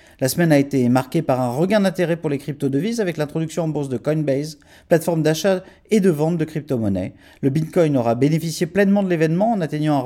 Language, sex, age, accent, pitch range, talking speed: French, male, 40-59, French, 125-170 Hz, 215 wpm